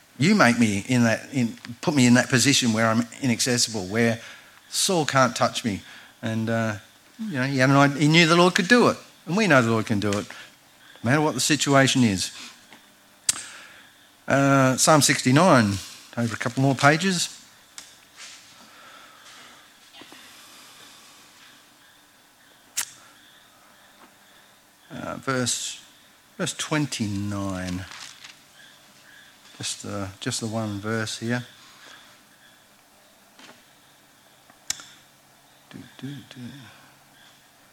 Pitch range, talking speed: 115-145 Hz, 105 wpm